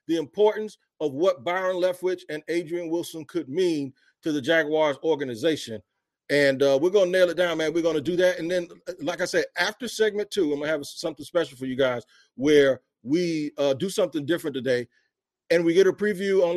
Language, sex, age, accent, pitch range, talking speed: English, male, 40-59, American, 140-175 Hz, 215 wpm